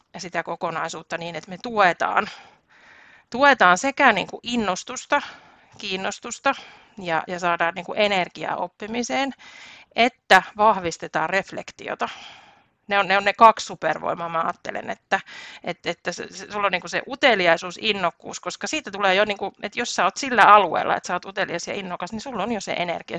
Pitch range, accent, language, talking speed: 175-210 Hz, native, Finnish, 170 wpm